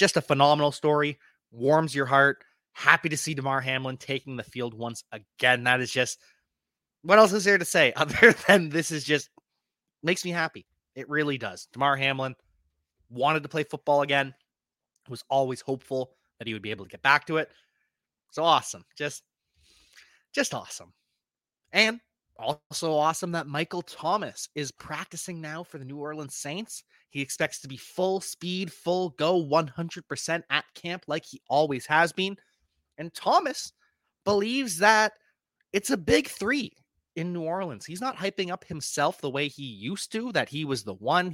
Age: 30-49